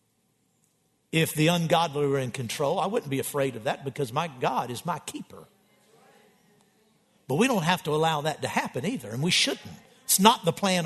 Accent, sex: American, male